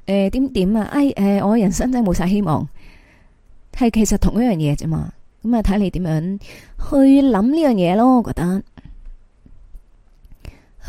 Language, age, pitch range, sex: Chinese, 20-39, 175-235 Hz, female